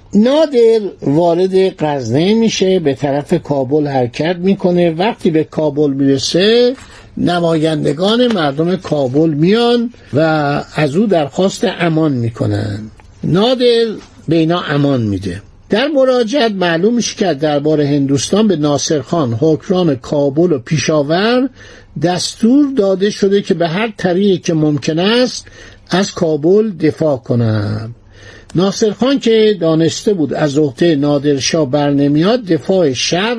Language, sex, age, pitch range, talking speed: Persian, male, 60-79, 145-215 Hz, 115 wpm